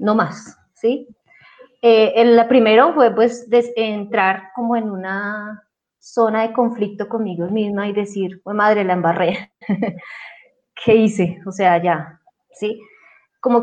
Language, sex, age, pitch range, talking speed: Spanish, female, 20-39, 190-230 Hz, 130 wpm